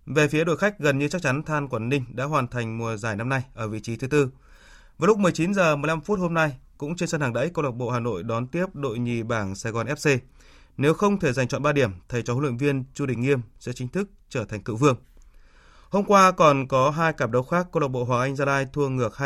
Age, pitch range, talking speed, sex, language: 20-39, 125-155 Hz, 275 wpm, male, Vietnamese